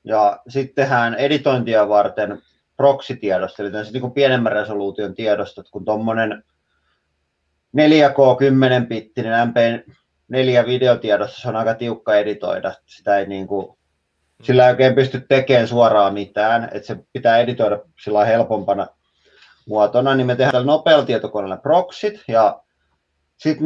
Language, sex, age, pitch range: Finnish, male, 30-49, 105-135 Hz